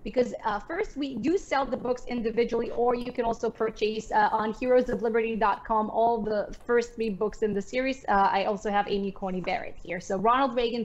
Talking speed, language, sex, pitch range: 200 wpm, English, female, 205-240 Hz